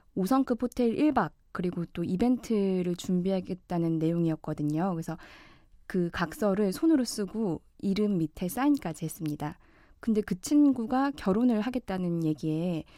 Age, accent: 20-39, native